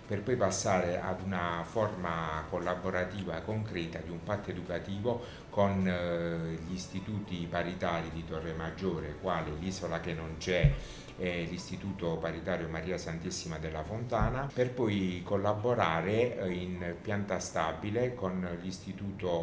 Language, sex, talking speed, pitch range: English, male, 120 wpm, 85-100 Hz